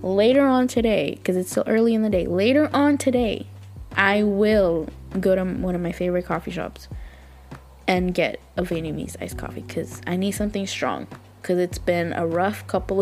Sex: female